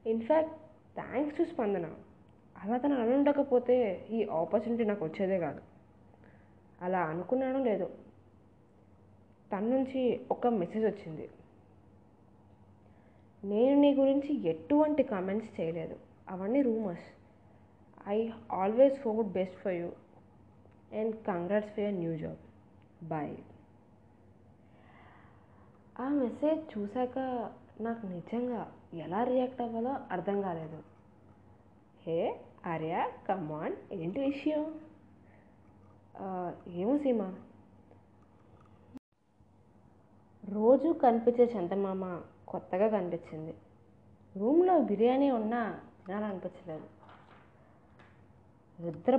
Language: Telugu